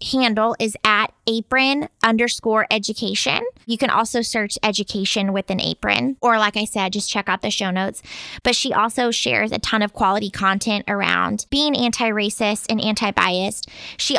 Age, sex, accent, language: 20-39, female, American, English